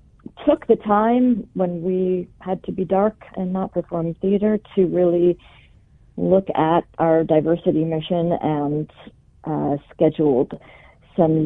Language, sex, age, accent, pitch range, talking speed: English, female, 40-59, American, 150-185 Hz, 125 wpm